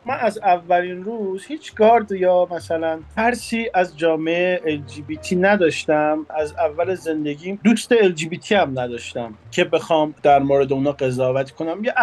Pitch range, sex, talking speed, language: 145-205 Hz, male, 160 wpm, English